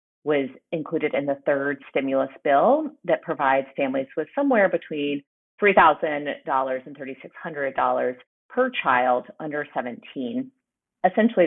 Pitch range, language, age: 140-200 Hz, English, 30-49